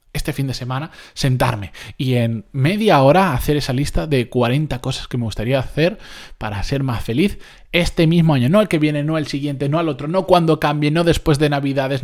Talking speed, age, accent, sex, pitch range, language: 215 wpm, 20-39, Spanish, male, 125-170 Hz, Spanish